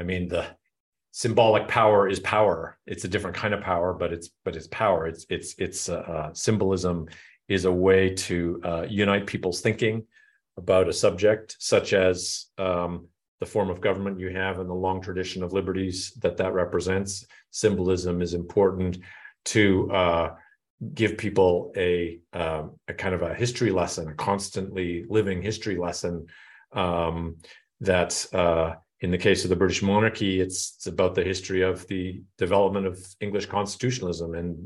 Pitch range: 90-100 Hz